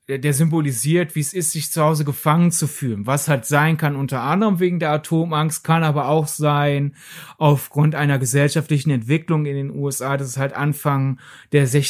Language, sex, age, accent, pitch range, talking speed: German, male, 30-49, German, 140-175 Hz, 180 wpm